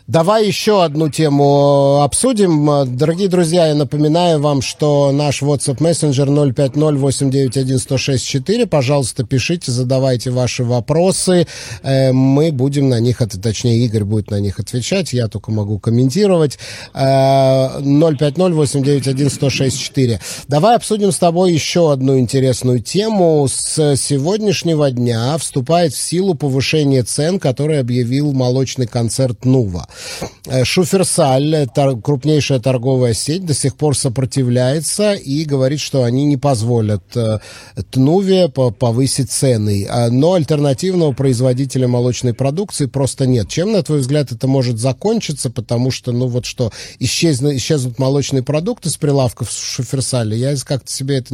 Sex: male